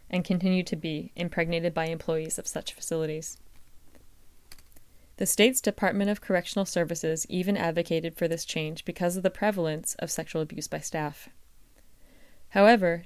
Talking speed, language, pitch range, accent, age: 145 wpm, English, 160-185 Hz, American, 20-39